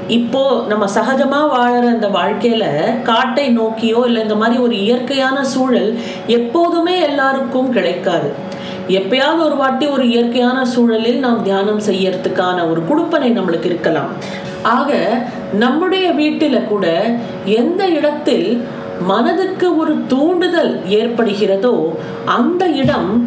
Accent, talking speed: native, 110 wpm